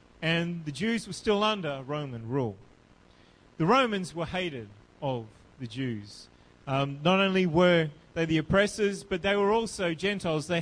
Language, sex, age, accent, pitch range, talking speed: English, male, 30-49, Australian, 140-195 Hz, 160 wpm